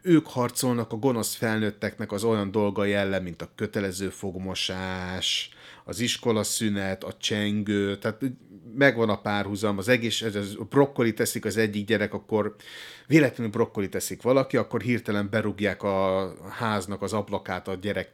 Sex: male